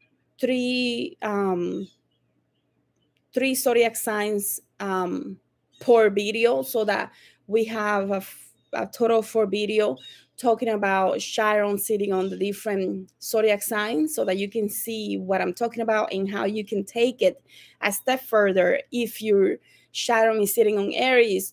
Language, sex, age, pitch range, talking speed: English, female, 30-49, 200-230 Hz, 150 wpm